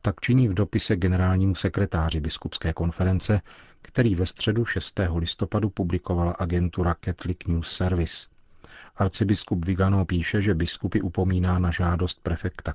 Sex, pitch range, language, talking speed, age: male, 85-100 Hz, Czech, 125 wpm, 40-59